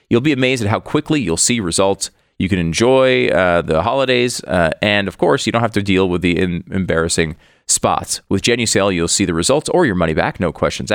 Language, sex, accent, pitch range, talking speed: English, male, American, 90-120 Hz, 220 wpm